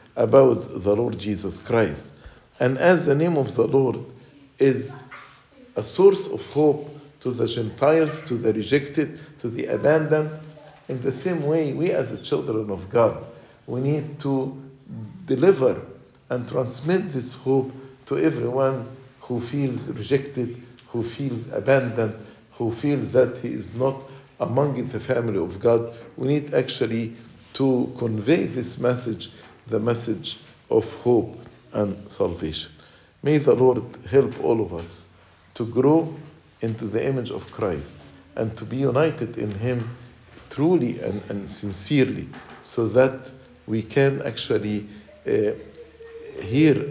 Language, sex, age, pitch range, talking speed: English, male, 50-69, 110-140 Hz, 135 wpm